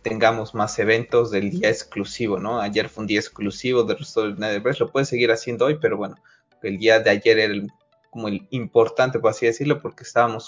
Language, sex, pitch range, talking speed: Spanish, male, 110-130 Hz, 205 wpm